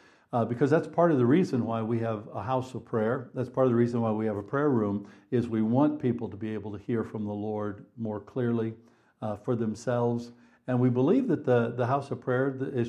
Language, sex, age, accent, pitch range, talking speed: English, male, 60-79, American, 105-125 Hz, 240 wpm